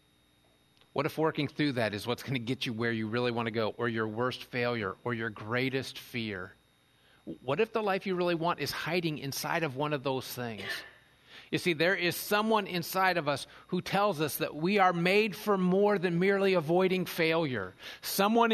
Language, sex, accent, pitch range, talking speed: English, male, American, 125-185 Hz, 200 wpm